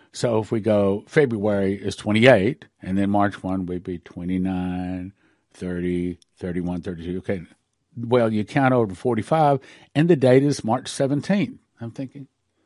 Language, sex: English, male